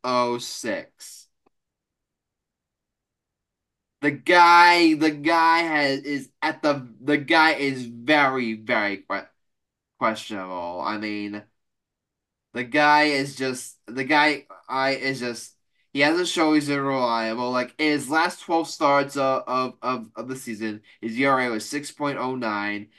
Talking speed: 130 wpm